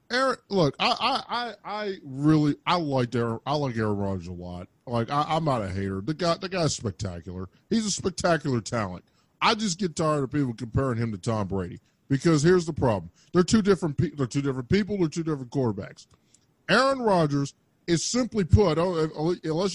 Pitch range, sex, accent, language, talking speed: 120-180 Hz, male, American, English, 190 wpm